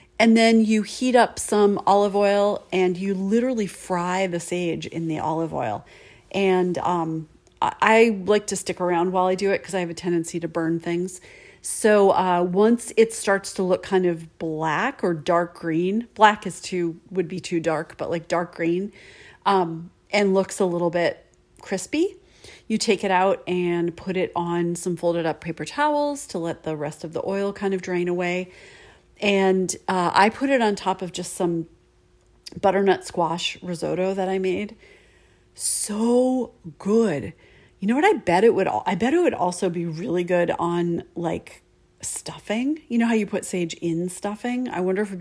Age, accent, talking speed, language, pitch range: 40-59, American, 185 wpm, English, 170-215 Hz